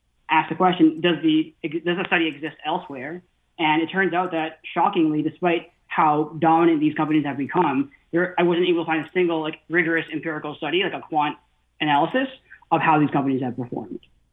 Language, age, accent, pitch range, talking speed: English, 20-39, American, 150-185 Hz, 190 wpm